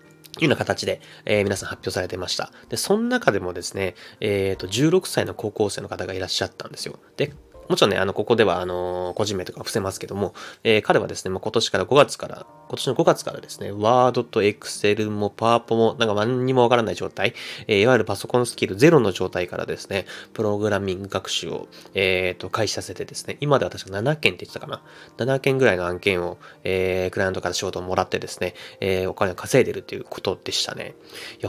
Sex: male